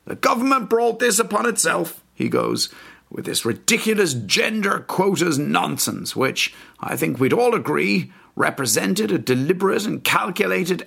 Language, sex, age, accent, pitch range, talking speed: English, male, 50-69, British, 130-205 Hz, 140 wpm